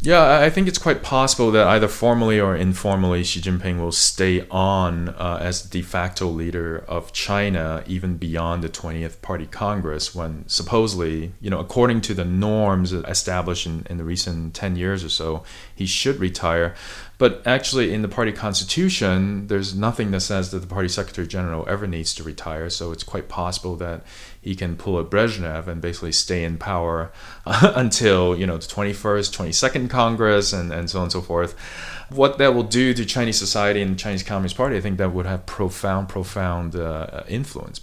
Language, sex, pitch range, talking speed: English, male, 85-105 Hz, 185 wpm